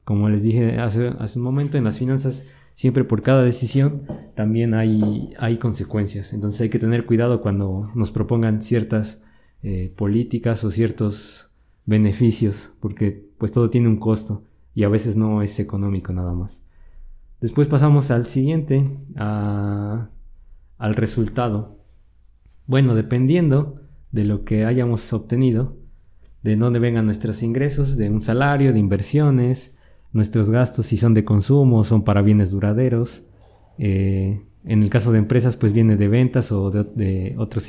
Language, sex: Spanish, male